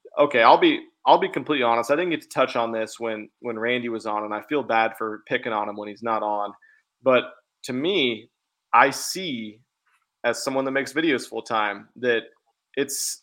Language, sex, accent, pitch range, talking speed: English, male, American, 110-130 Hz, 205 wpm